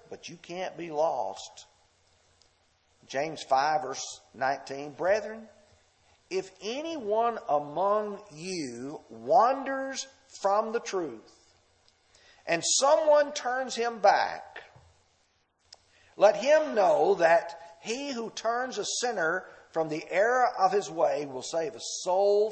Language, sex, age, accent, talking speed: English, male, 50-69, American, 110 wpm